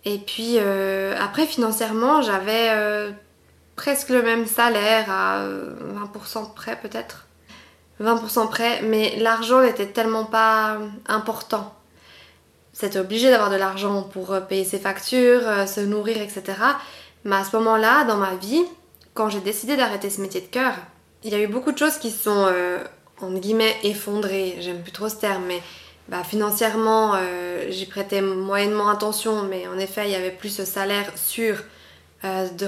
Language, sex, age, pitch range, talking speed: French, female, 20-39, 195-225 Hz, 160 wpm